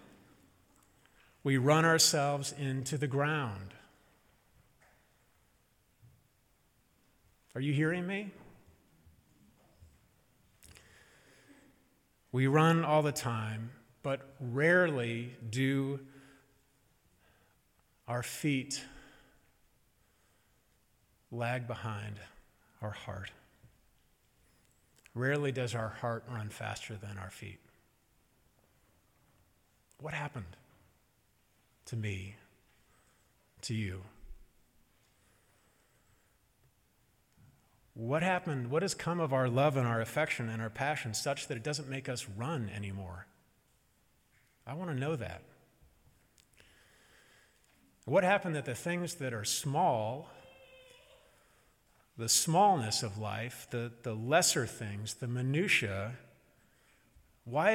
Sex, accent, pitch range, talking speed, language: male, American, 110-140 Hz, 90 wpm, English